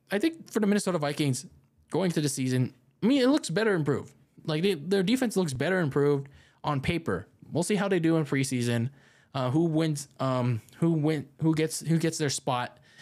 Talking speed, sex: 200 wpm, male